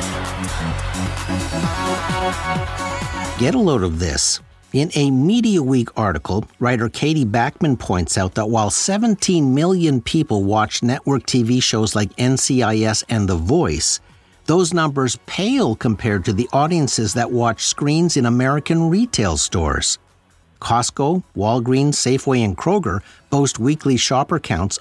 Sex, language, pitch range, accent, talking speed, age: male, English, 100-155 Hz, American, 125 wpm, 50-69